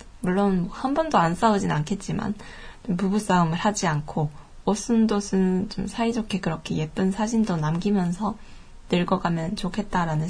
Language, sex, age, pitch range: Japanese, female, 20-39, 180-210 Hz